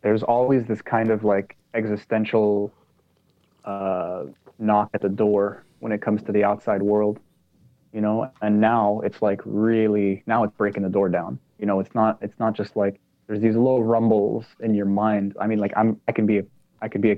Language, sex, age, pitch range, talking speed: English, male, 20-39, 100-115 Hz, 205 wpm